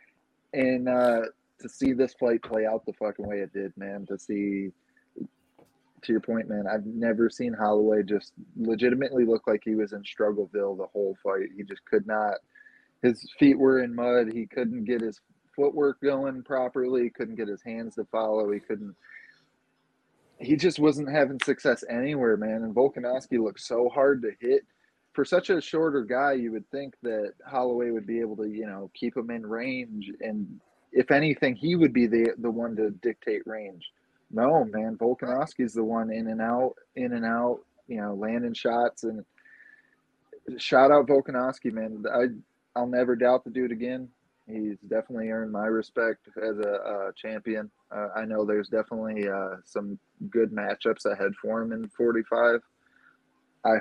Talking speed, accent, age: 175 wpm, American, 20-39